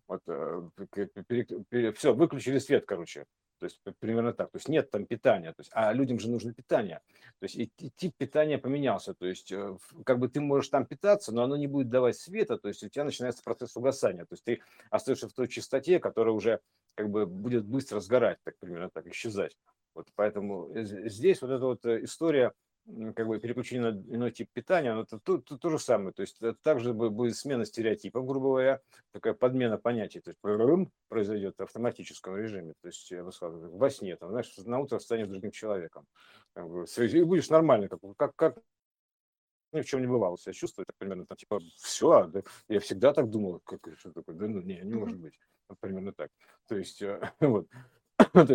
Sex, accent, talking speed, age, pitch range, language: male, native, 205 wpm, 50-69, 110-140 Hz, Russian